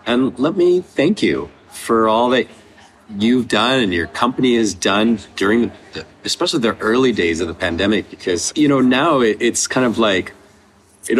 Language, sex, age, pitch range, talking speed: English, male, 30-49, 95-115 Hz, 180 wpm